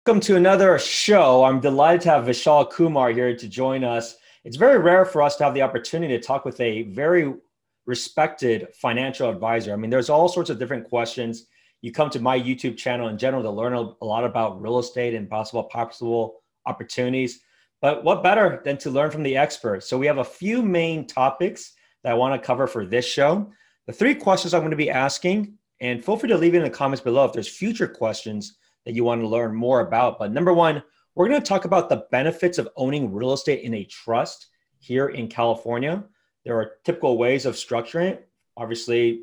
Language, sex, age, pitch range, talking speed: English, male, 30-49, 115-155 Hz, 205 wpm